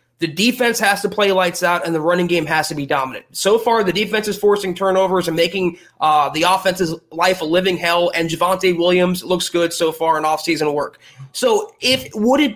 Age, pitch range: 20-39, 170-210 Hz